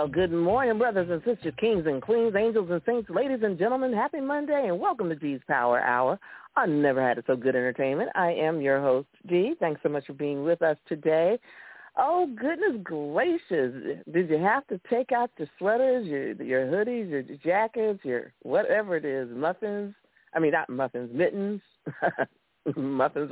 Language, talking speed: English, 185 wpm